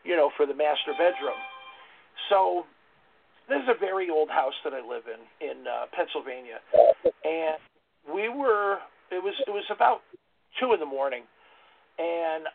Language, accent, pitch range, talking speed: English, American, 155-245 Hz, 155 wpm